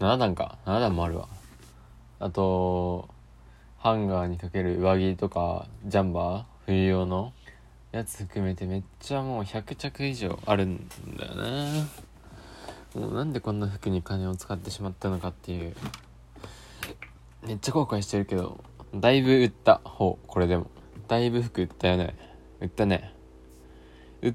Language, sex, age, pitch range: Japanese, male, 20-39, 85-110 Hz